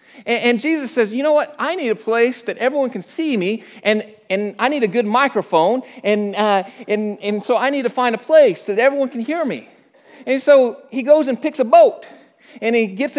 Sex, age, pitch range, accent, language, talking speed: male, 40-59, 230-295 Hz, American, English, 225 wpm